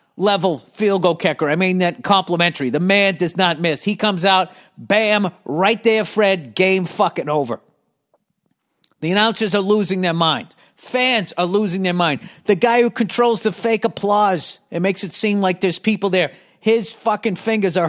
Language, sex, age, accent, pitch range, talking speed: English, male, 40-59, American, 180-235 Hz, 180 wpm